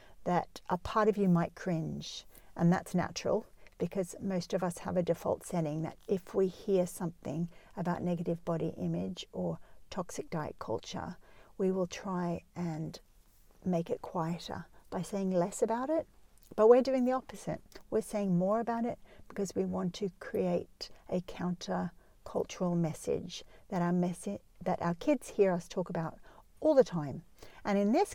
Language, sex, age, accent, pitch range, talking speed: English, female, 50-69, Australian, 175-215 Hz, 165 wpm